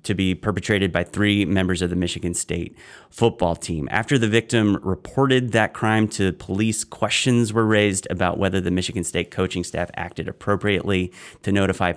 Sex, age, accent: male, 30-49, American